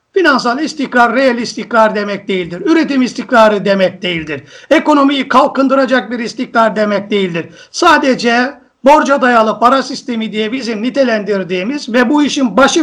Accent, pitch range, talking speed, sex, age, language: native, 230-305 Hz, 130 wpm, male, 50-69, Turkish